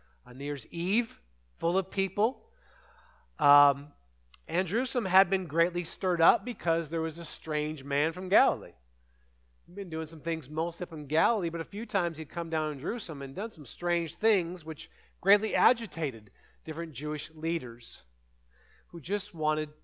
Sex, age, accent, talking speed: male, 50-69, American, 160 wpm